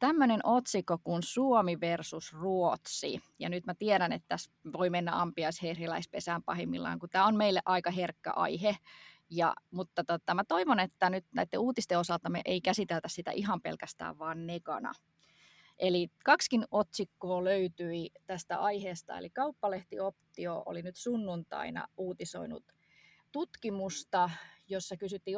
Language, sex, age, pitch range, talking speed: Finnish, female, 20-39, 170-205 Hz, 130 wpm